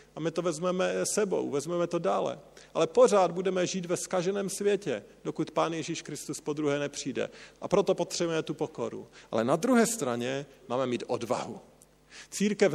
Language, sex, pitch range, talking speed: Slovak, male, 140-195 Hz, 160 wpm